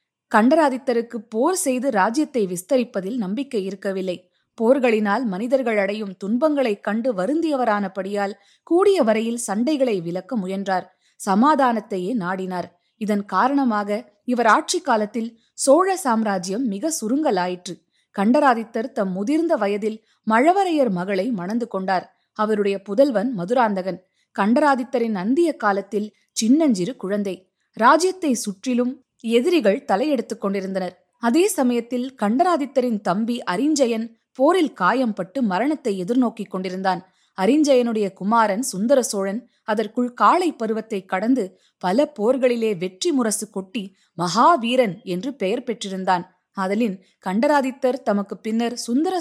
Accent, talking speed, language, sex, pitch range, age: native, 95 wpm, Tamil, female, 200-260 Hz, 20-39